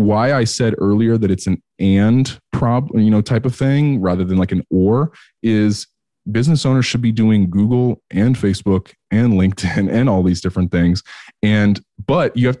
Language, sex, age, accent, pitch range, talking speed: English, male, 20-39, American, 95-120 Hz, 185 wpm